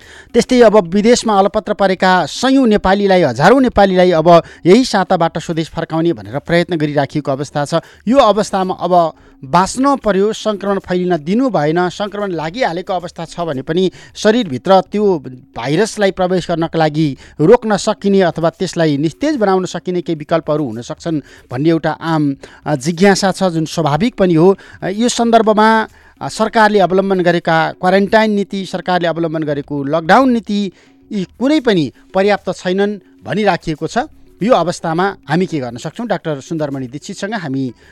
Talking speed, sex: 125 wpm, male